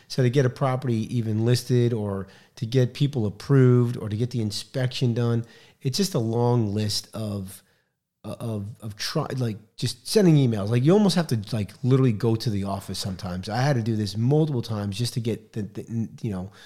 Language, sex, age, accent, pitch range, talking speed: English, male, 40-59, American, 105-130 Hz, 205 wpm